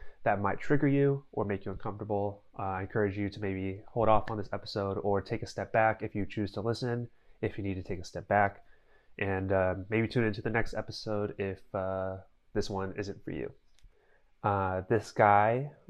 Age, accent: 20-39, American